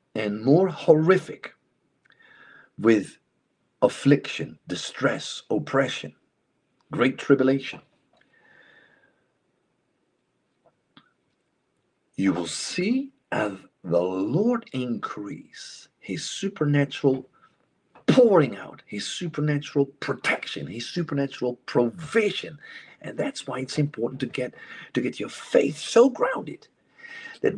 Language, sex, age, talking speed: English, male, 50-69, 85 wpm